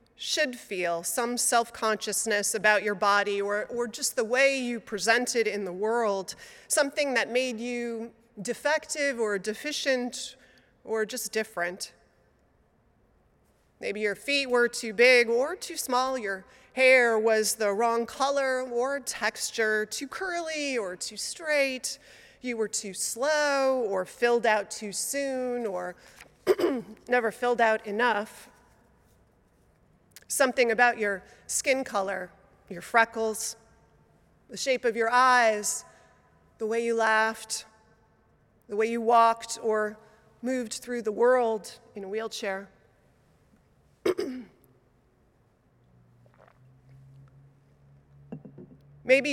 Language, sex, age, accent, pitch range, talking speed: English, female, 30-49, American, 205-250 Hz, 110 wpm